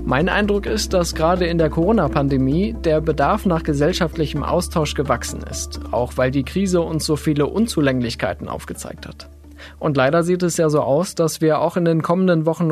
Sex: male